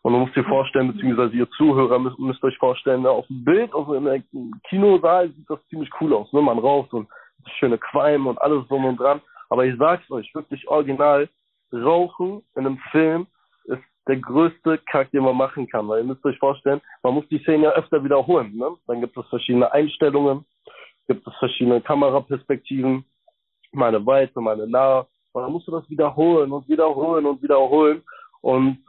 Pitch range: 130-160 Hz